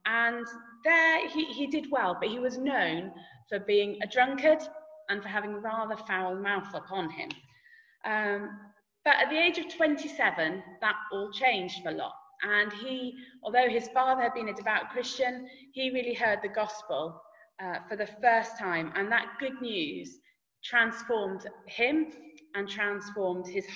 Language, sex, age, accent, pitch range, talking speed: English, female, 20-39, British, 205-290 Hz, 160 wpm